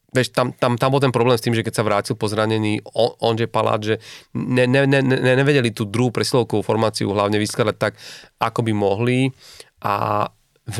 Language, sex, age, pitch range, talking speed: Slovak, male, 30-49, 110-125 Hz, 195 wpm